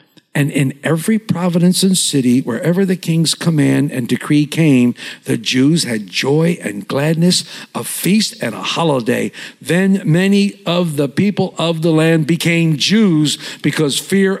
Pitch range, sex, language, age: 140-185 Hz, male, English, 60-79